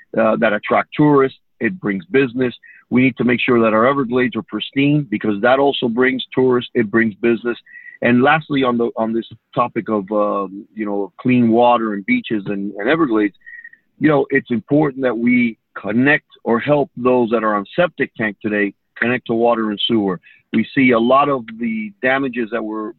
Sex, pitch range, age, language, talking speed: male, 110-135 Hz, 40-59, English, 190 wpm